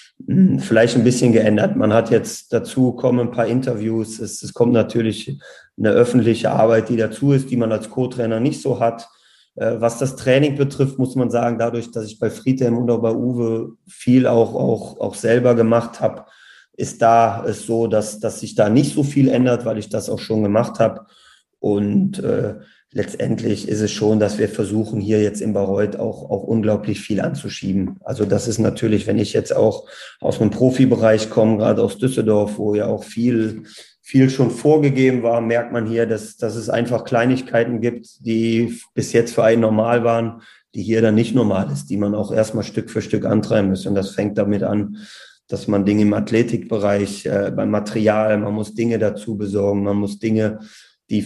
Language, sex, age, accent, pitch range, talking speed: German, male, 30-49, German, 105-120 Hz, 195 wpm